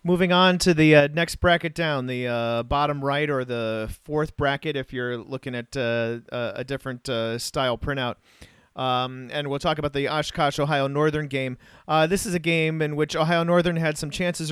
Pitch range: 135-170 Hz